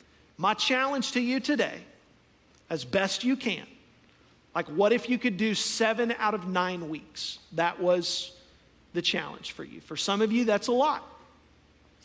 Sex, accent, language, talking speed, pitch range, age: male, American, English, 170 wpm, 180-235 Hz, 40-59